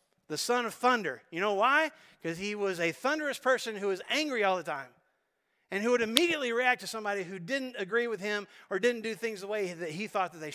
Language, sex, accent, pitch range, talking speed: English, male, American, 165-215 Hz, 240 wpm